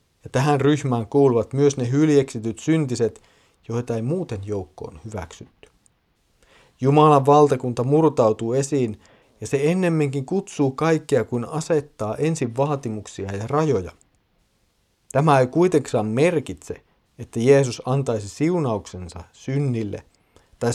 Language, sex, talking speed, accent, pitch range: Finnish, male, 110 wpm, native, 110-140 Hz